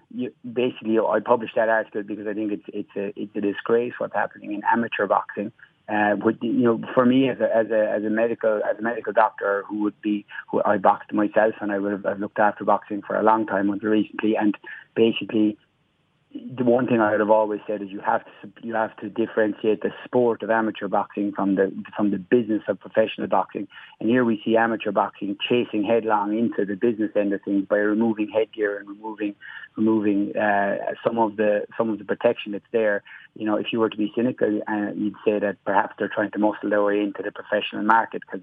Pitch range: 105-115 Hz